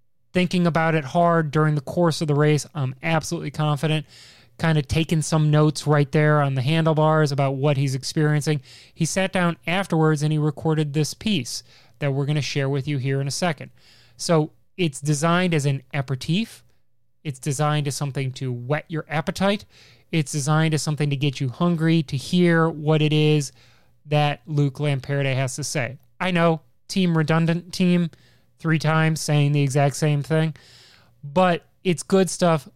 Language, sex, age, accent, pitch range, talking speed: English, male, 20-39, American, 140-165 Hz, 175 wpm